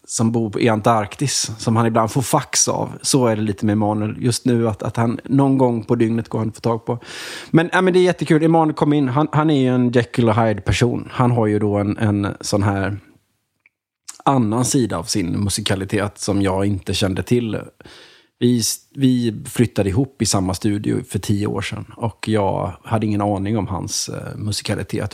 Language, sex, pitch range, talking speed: English, male, 105-125 Hz, 200 wpm